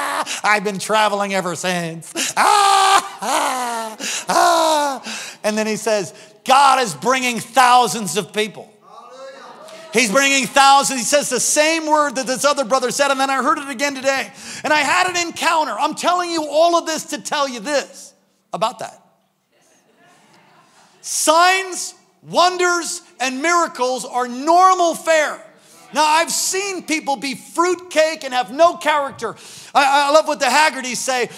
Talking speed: 150 wpm